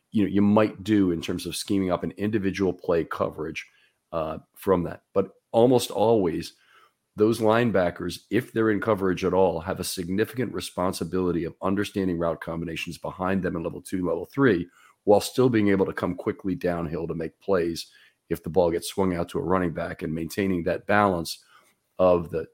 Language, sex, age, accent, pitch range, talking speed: English, male, 40-59, American, 90-105 Hz, 185 wpm